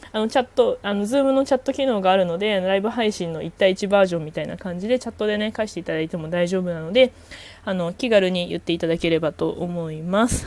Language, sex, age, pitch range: Japanese, female, 20-39, 180-255 Hz